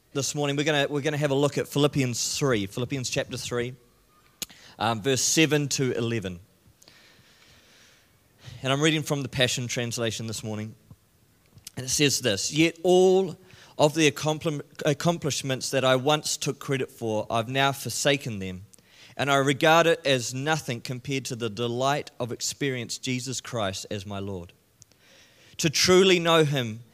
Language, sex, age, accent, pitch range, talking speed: English, male, 30-49, Australian, 120-150 Hz, 150 wpm